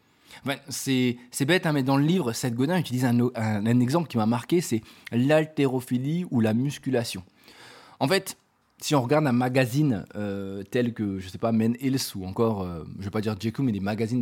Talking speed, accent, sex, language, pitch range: 220 wpm, French, male, French, 115-155 Hz